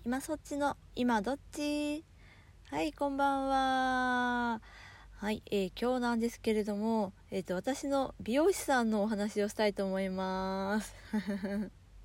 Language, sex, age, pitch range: Japanese, female, 20-39, 190-285 Hz